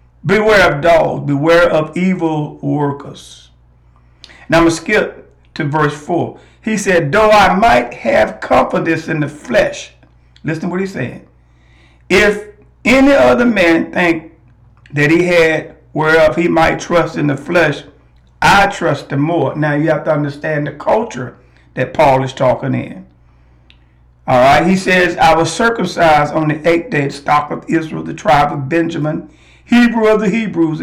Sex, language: male, English